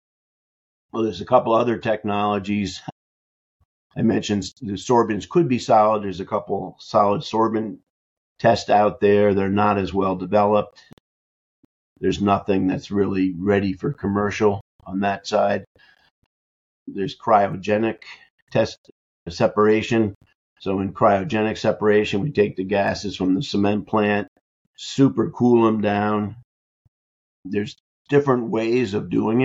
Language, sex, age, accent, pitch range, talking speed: English, male, 50-69, American, 100-110 Hz, 125 wpm